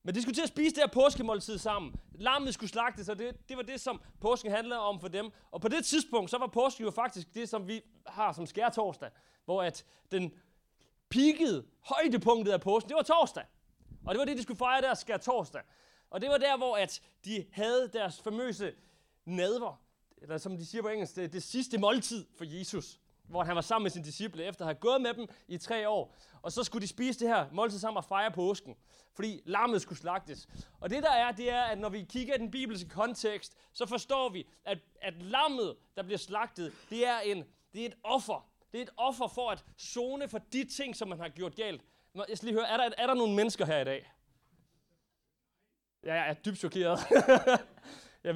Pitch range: 180-245 Hz